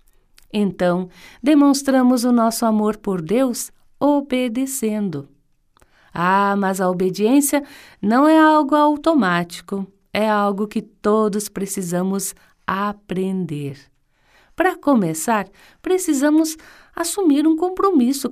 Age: 50-69